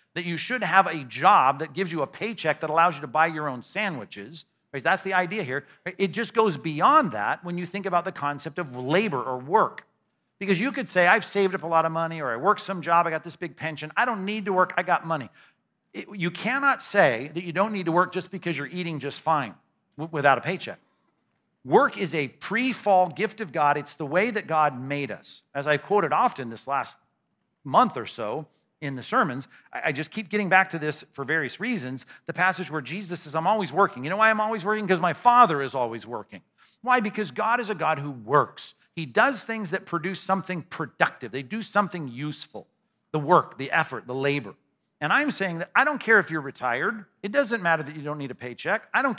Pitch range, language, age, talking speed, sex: 155-205 Hz, English, 50-69, 230 wpm, male